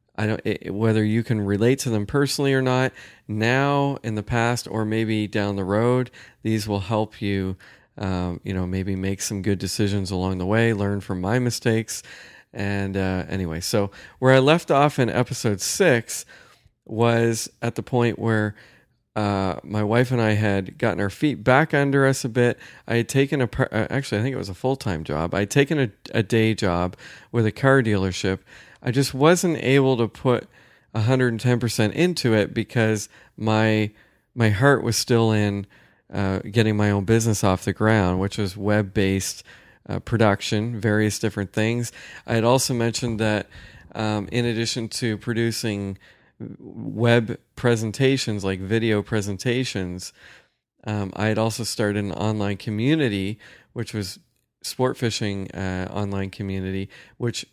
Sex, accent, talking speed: male, American, 160 wpm